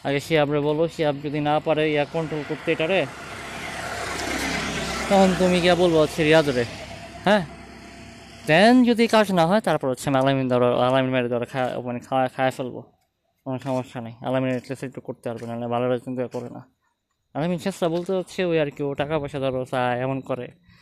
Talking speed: 85 wpm